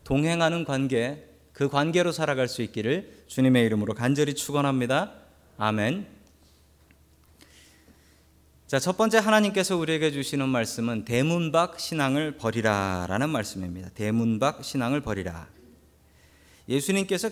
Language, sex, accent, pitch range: Korean, male, native, 100-145 Hz